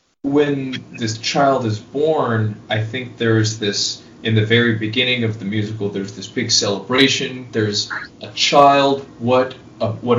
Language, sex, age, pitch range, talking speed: English, male, 20-39, 105-115 Hz, 155 wpm